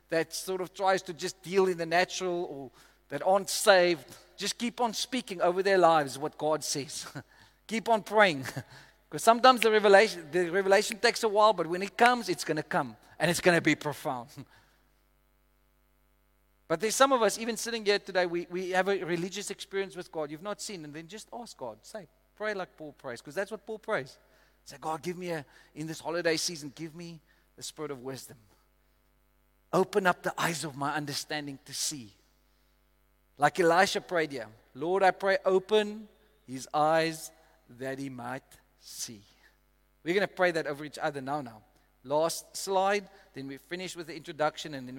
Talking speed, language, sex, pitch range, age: 190 wpm, English, male, 140-195 Hz, 40-59